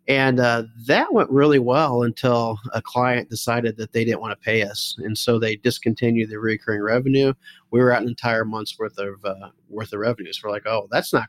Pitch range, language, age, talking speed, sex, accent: 110-130 Hz, English, 40-59, 225 wpm, male, American